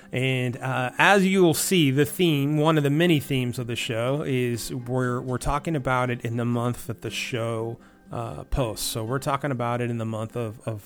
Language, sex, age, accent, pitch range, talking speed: English, male, 30-49, American, 120-145 Hz, 210 wpm